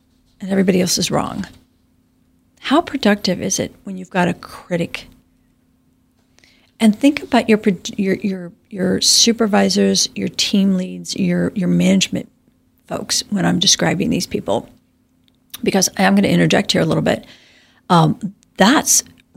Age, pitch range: 50-69, 170-230 Hz